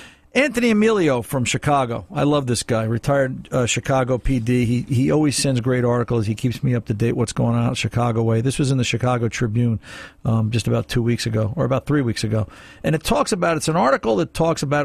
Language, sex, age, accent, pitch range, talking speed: English, male, 50-69, American, 120-160 Hz, 230 wpm